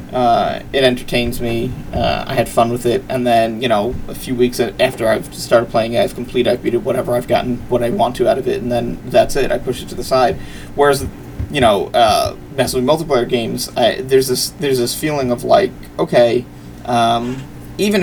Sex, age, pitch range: male, 30-49, 120-155 Hz